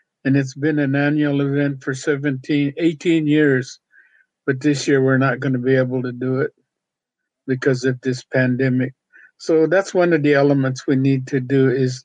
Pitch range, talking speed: 130-145 Hz, 185 wpm